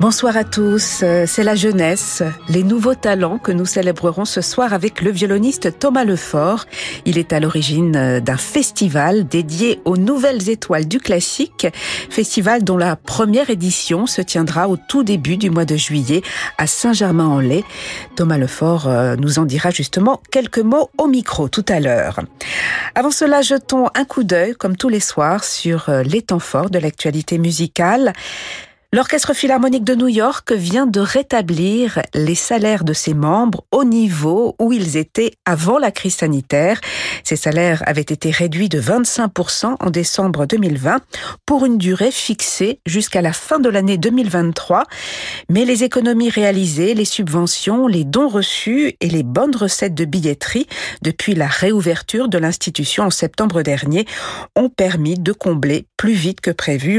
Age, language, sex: 50-69, French, female